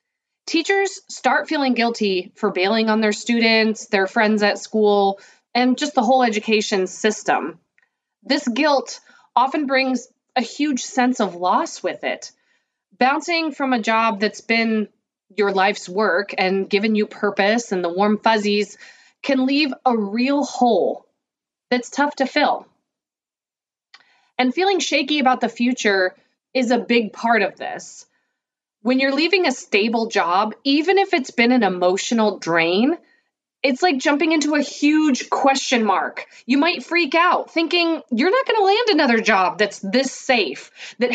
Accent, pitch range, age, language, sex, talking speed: American, 215-295 Hz, 30-49, English, female, 155 wpm